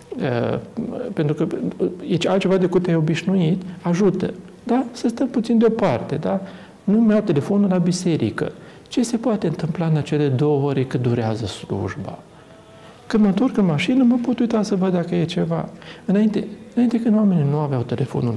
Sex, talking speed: male, 165 wpm